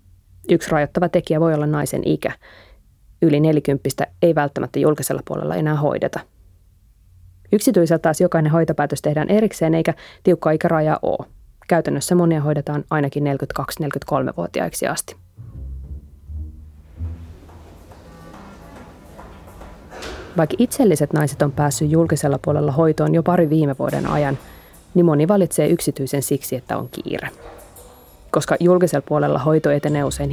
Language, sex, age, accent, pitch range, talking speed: Finnish, female, 20-39, native, 110-165 Hz, 115 wpm